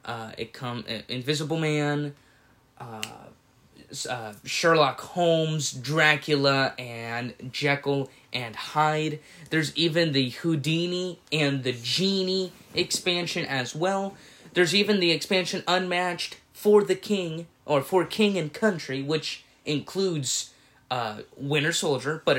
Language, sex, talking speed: English, male, 115 wpm